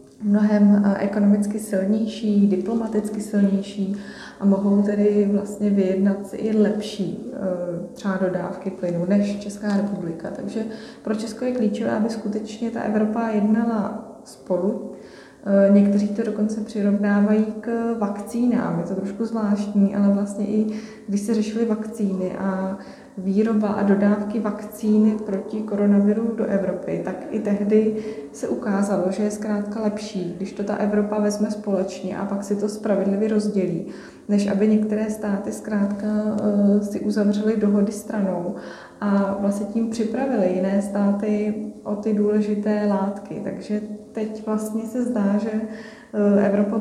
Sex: female